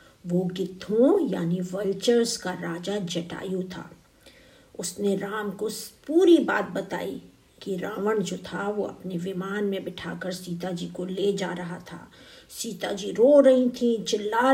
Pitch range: 190-230 Hz